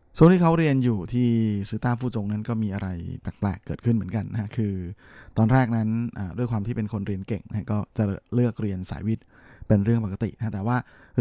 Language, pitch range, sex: Thai, 100-115 Hz, male